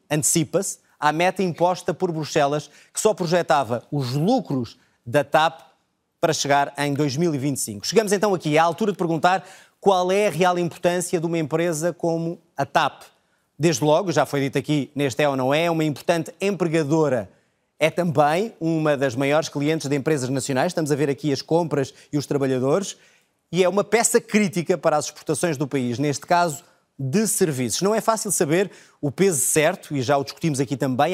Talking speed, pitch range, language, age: 180 wpm, 145-175 Hz, Portuguese, 20-39